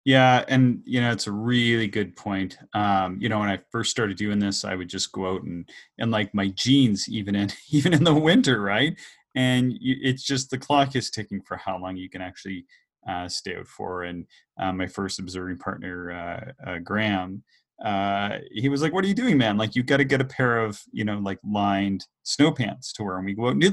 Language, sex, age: English, male, 30-49